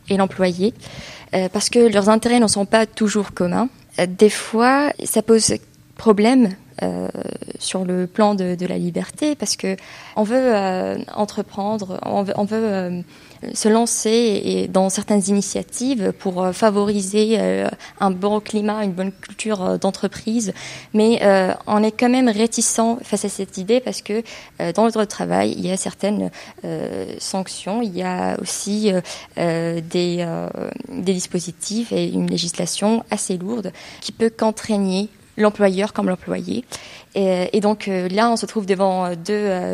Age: 20-39